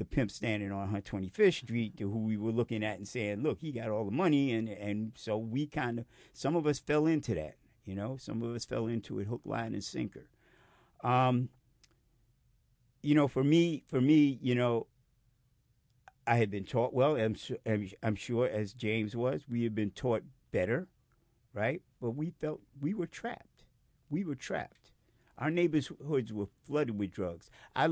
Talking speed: 190 wpm